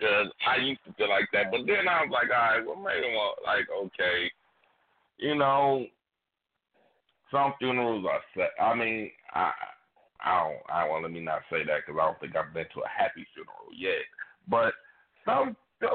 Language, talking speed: English, 190 wpm